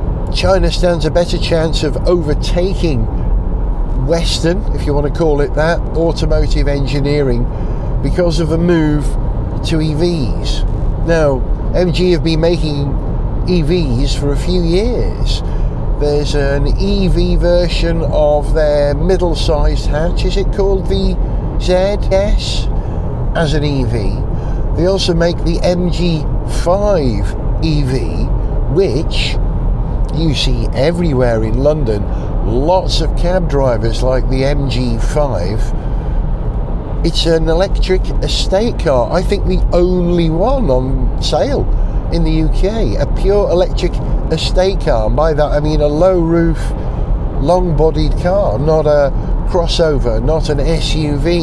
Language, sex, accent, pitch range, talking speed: English, male, British, 130-170 Hz, 125 wpm